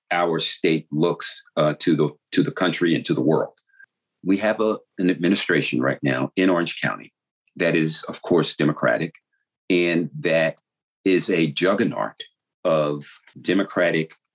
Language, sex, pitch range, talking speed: English, male, 75-95 Hz, 145 wpm